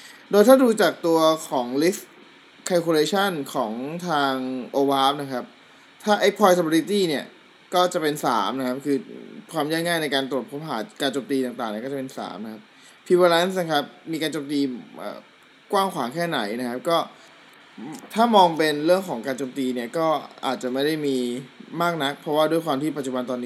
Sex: male